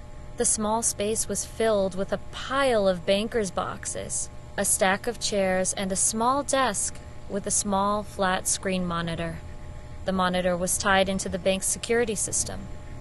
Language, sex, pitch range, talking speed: English, female, 185-220 Hz, 155 wpm